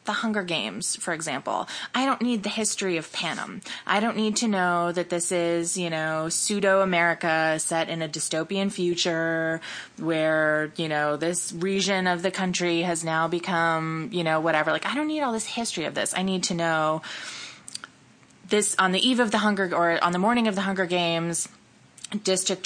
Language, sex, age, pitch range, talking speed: English, female, 20-39, 160-195 Hz, 190 wpm